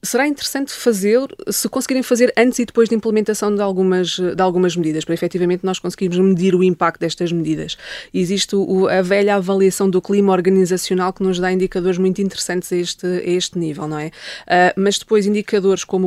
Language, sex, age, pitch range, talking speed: English, female, 20-39, 175-200 Hz, 190 wpm